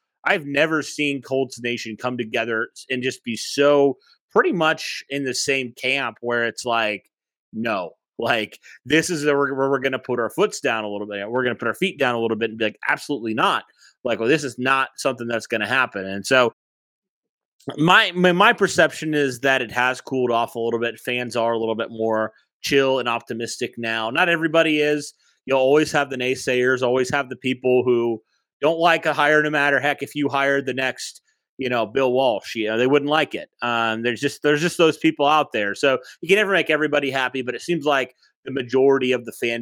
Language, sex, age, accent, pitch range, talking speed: English, male, 30-49, American, 115-145 Hz, 220 wpm